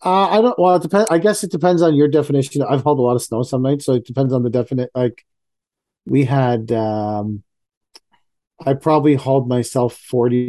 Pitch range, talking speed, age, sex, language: 120-155 Hz, 205 wpm, 40-59, male, English